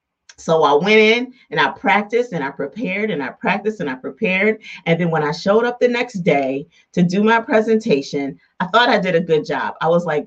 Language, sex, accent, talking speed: English, female, American, 230 wpm